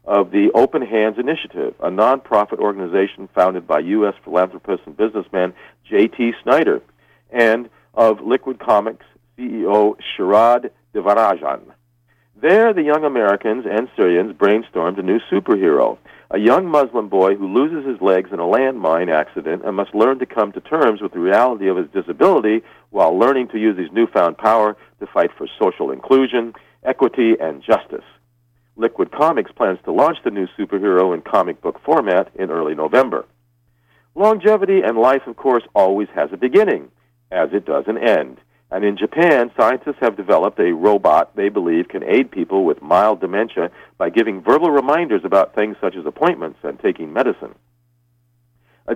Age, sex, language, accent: 50-69, male, English, American